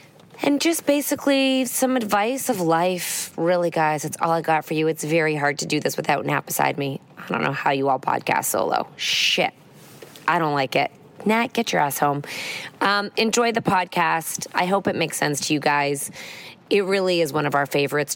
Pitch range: 145-185 Hz